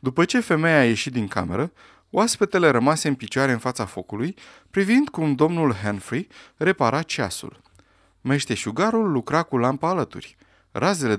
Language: Romanian